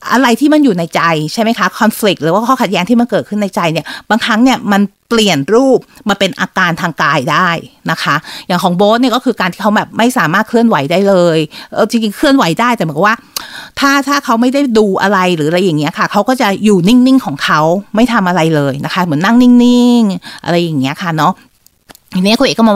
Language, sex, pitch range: Thai, female, 180-235 Hz